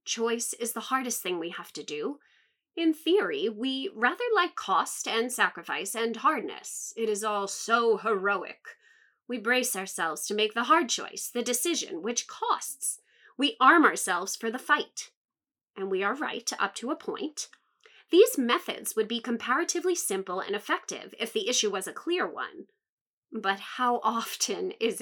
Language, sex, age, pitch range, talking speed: English, female, 30-49, 205-335 Hz, 165 wpm